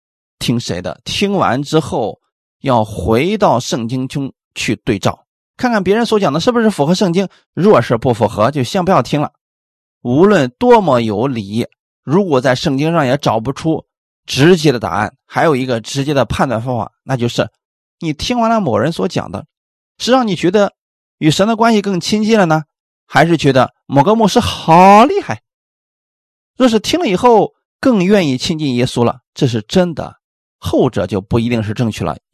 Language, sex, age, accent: Chinese, male, 20-39, native